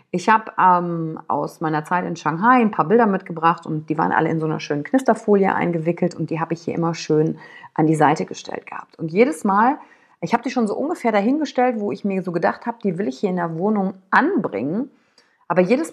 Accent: German